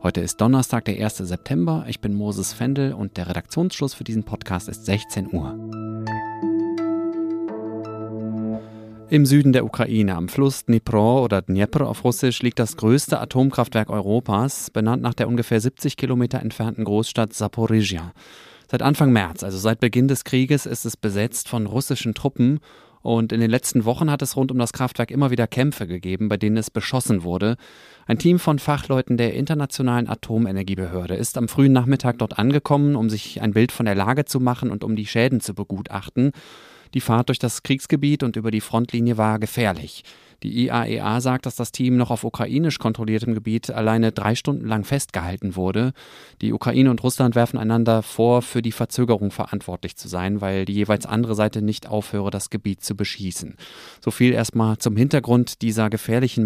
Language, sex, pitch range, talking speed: German, male, 105-130 Hz, 175 wpm